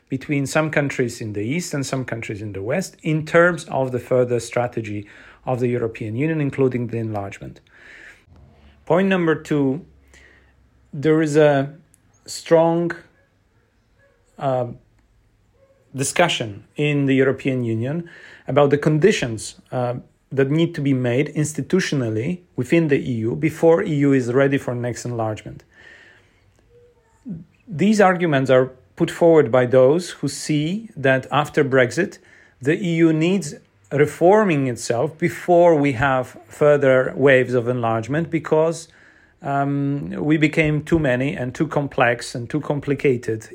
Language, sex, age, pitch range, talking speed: English, male, 40-59, 120-160 Hz, 130 wpm